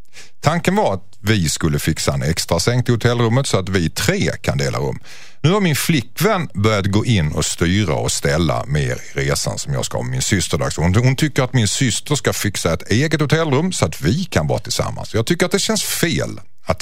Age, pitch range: 50-69, 90-135 Hz